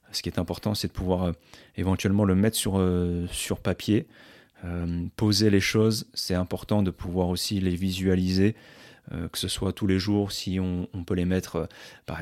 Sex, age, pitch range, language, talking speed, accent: male, 30-49, 90-105 Hz, French, 195 wpm, French